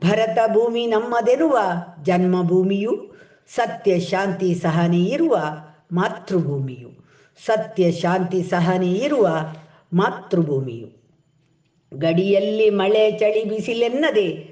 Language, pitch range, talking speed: Kannada, 165-225 Hz, 80 wpm